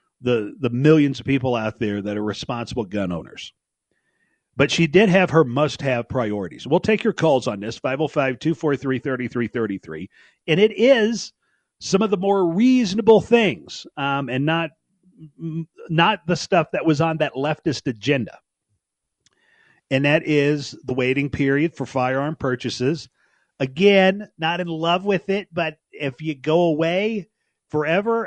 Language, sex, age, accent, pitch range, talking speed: English, male, 40-59, American, 125-170 Hz, 145 wpm